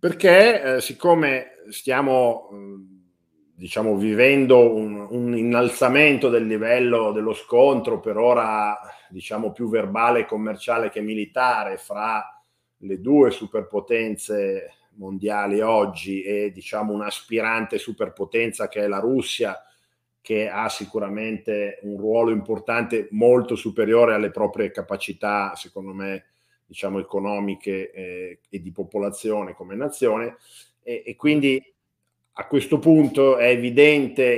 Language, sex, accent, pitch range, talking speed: Italian, male, native, 105-125 Hz, 115 wpm